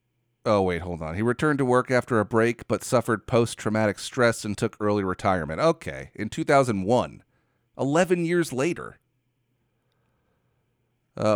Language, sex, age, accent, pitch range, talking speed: English, male, 30-49, American, 110-125 Hz, 135 wpm